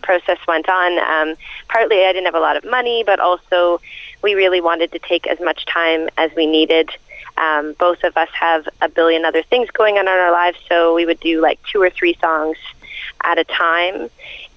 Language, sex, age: English, female, 30-49